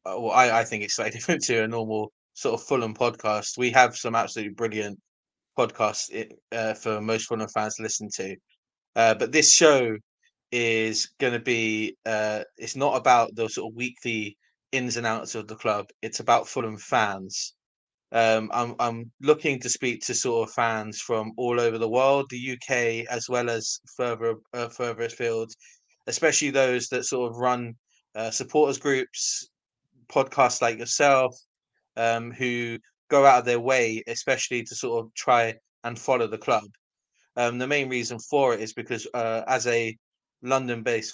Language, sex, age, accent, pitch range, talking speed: English, male, 20-39, British, 110-125 Hz, 175 wpm